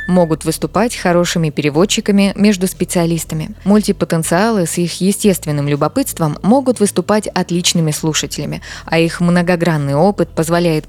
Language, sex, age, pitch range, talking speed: Russian, female, 20-39, 155-190 Hz, 110 wpm